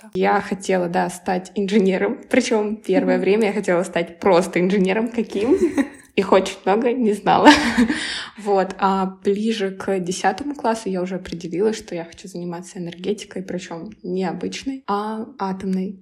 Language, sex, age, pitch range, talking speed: Russian, female, 20-39, 190-220 Hz, 140 wpm